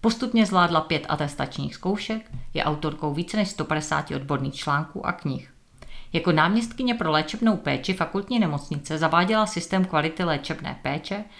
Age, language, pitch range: 40-59, Czech, 150-195 Hz